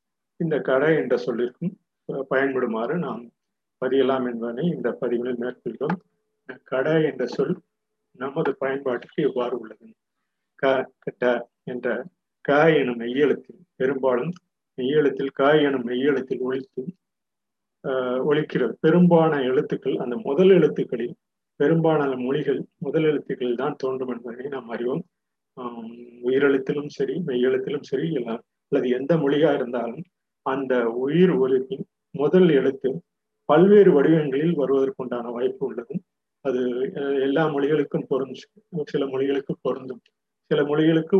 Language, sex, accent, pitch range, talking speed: Tamil, male, native, 130-180 Hz, 100 wpm